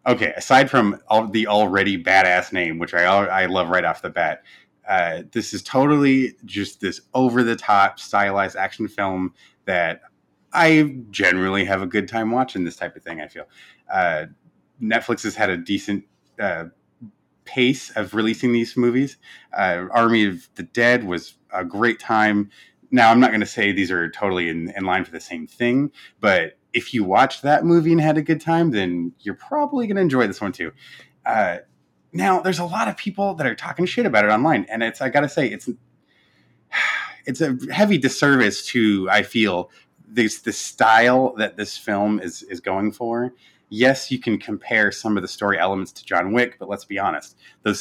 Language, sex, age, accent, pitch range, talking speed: English, male, 30-49, American, 100-135 Hz, 190 wpm